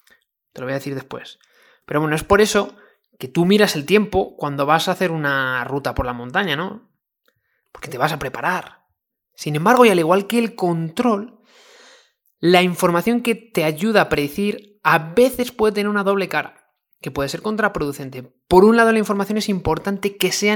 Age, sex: 20-39, male